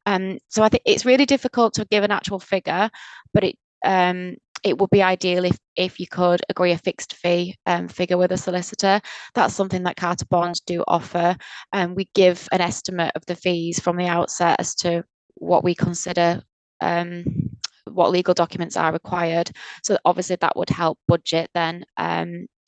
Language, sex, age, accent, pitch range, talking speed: English, female, 20-39, British, 170-190 Hz, 185 wpm